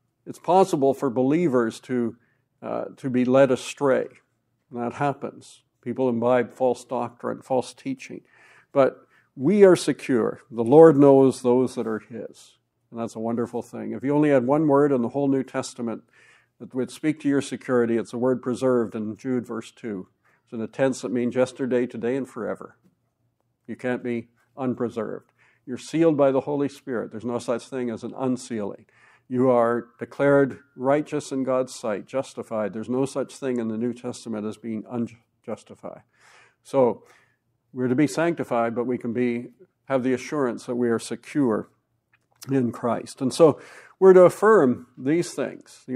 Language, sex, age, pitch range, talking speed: English, male, 60-79, 120-135 Hz, 170 wpm